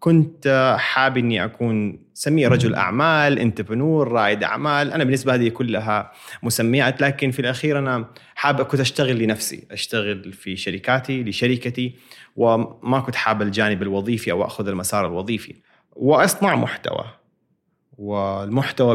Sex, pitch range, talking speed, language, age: male, 110-135 Hz, 125 wpm, Arabic, 30-49